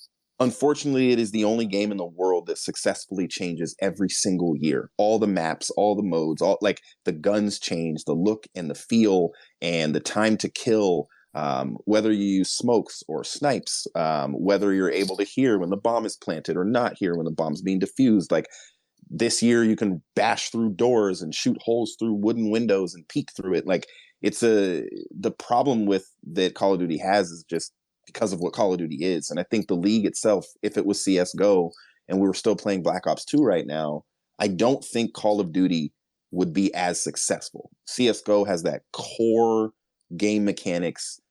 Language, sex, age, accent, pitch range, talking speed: English, male, 30-49, American, 85-110 Hz, 195 wpm